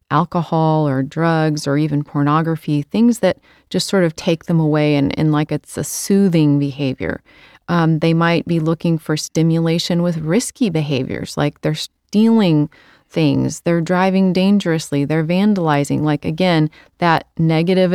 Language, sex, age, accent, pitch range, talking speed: English, female, 30-49, American, 150-180 Hz, 145 wpm